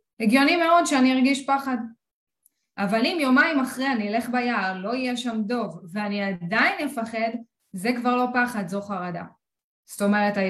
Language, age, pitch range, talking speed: Hebrew, 20-39, 190-235 Hz, 155 wpm